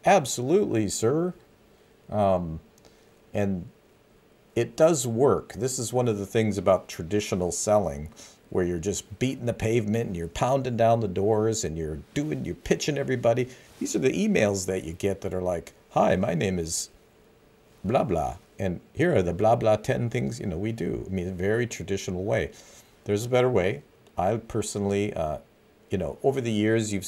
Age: 50-69